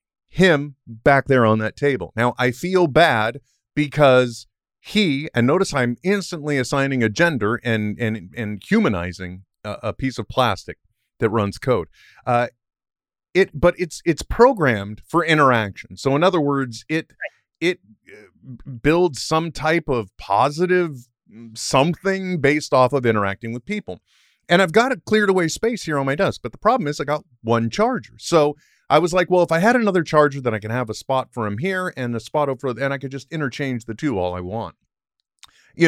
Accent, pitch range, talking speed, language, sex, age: American, 115-160 Hz, 185 wpm, English, male, 30-49